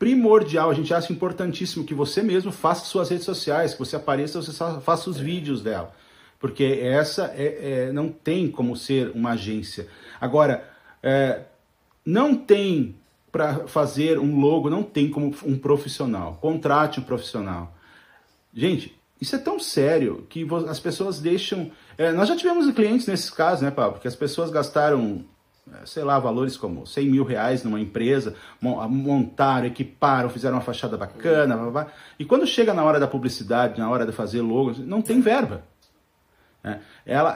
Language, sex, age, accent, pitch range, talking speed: Portuguese, male, 40-59, Brazilian, 130-185 Hz, 160 wpm